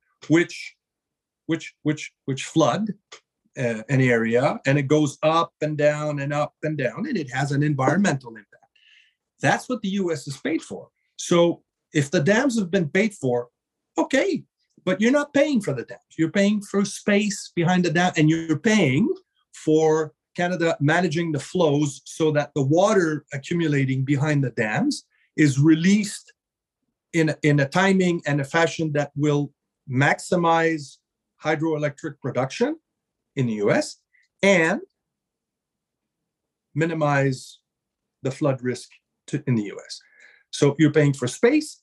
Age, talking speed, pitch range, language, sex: 40-59, 145 wpm, 140-195 Hz, English, male